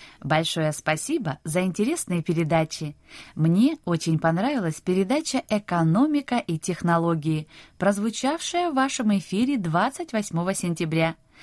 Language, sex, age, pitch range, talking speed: Russian, female, 20-39, 160-240 Hz, 95 wpm